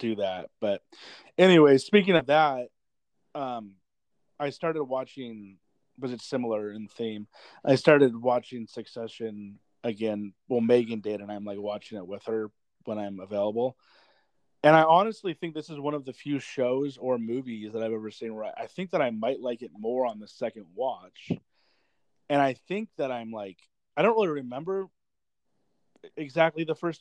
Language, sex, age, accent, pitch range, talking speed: English, male, 30-49, American, 110-145 Hz, 170 wpm